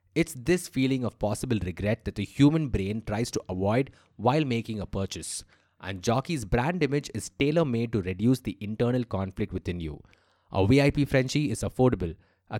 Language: English